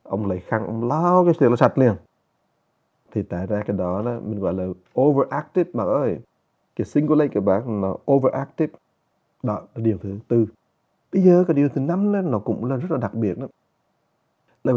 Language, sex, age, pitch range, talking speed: English, male, 30-49, 115-150 Hz, 200 wpm